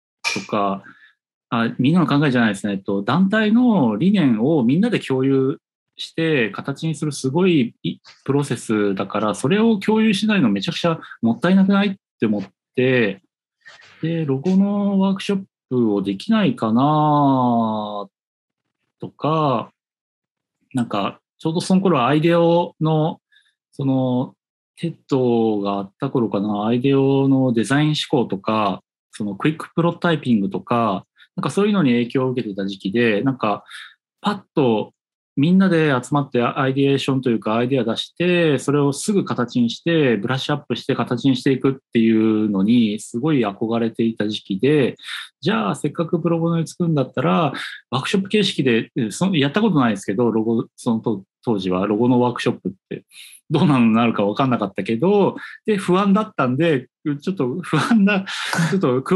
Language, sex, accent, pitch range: Japanese, male, native, 115-175 Hz